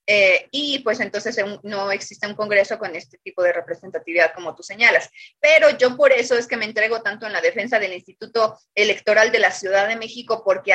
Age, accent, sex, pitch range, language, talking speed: 30-49, Mexican, female, 200-265 Hz, Spanish, 205 wpm